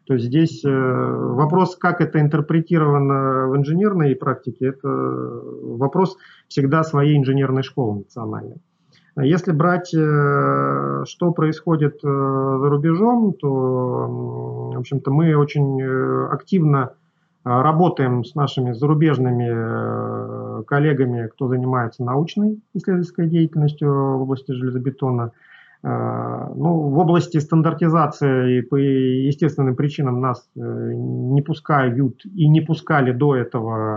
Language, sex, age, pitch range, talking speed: Russian, male, 30-49, 125-155 Hz, 100 wpm